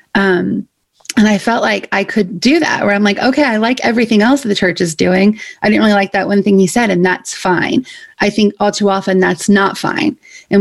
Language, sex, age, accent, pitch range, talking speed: English, female, 30-49, American, 185-220 Hz, 230 wpm